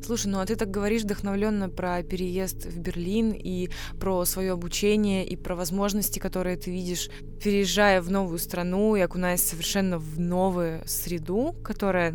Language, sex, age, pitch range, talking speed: Russian, female, 20-39, 180-205 Hz, 160 wpm